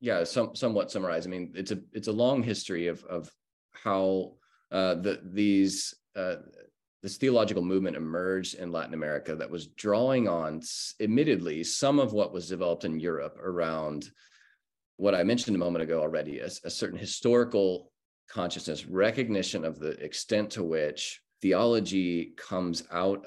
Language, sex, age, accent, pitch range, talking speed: English, male, 30-49, American, 85-105 Hz, 155 wpm